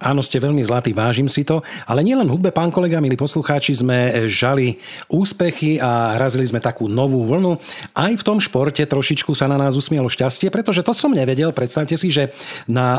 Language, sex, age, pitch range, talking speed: Slovak, male, 40-59, 125-160 Hz, 190 wpm